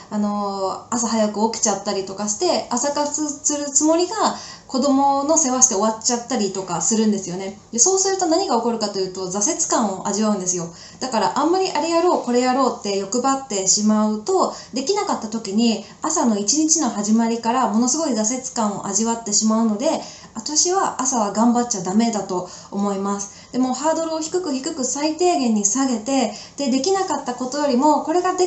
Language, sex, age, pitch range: Japanese, female, 20-39, 210-295 Hz